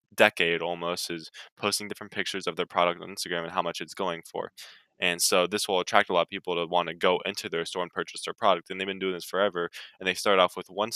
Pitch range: 85-95 Hz